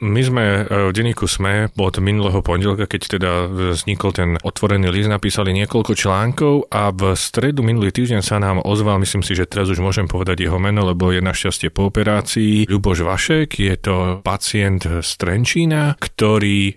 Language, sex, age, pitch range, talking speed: Slovak, male, 40-59, 90-110 Hz, 170 wpm